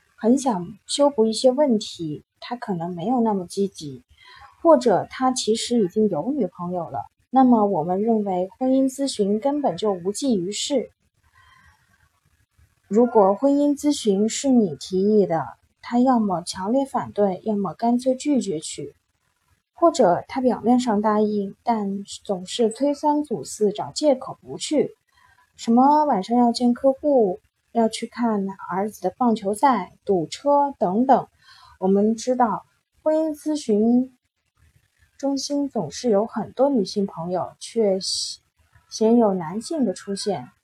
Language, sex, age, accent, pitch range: Chinese, female, 20-39, native, 195-255 Hz